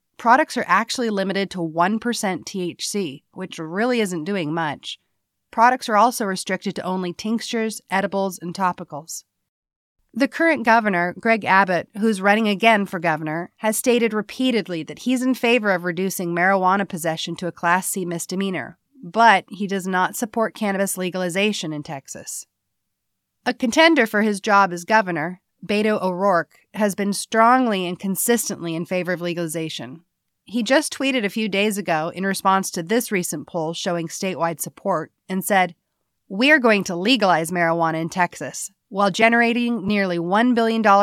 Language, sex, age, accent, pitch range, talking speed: English, female, 30-49, American, 175-225 Hz, 155 wpm